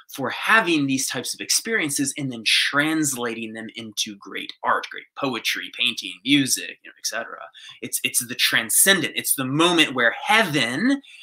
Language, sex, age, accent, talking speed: English, male, 20-39, American, 160 wpm